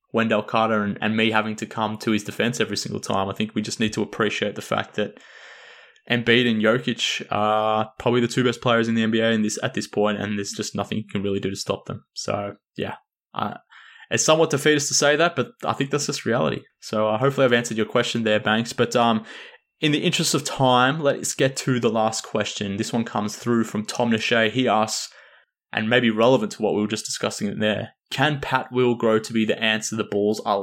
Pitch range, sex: 105-120 Hz, male